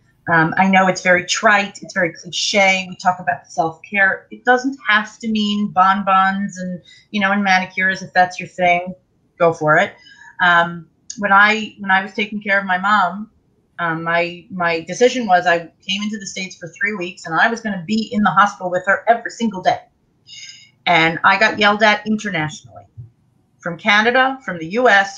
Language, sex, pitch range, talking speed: Hebrew, female, 175-210 Hz, 190 wpm